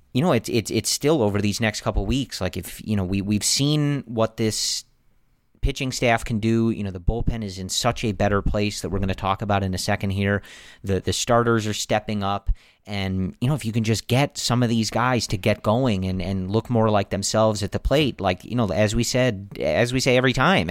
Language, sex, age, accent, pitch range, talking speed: English, male, 40-59, American, 95-115 Hz, 245 wpm